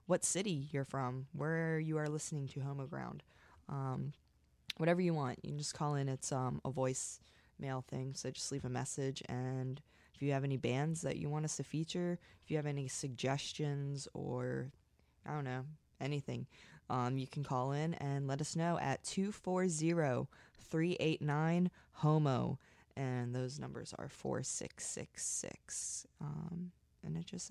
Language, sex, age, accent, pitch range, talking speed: English, female, 20-39, American, 135-170 Hz, 155 wpm